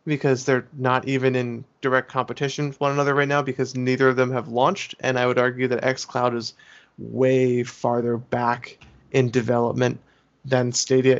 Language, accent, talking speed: English, American, 170 wpm